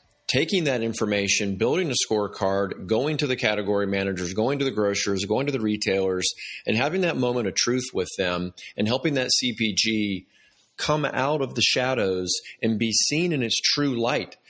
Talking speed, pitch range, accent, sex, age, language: 180 wpm, 100-125 Hz, American, male, 30-49, English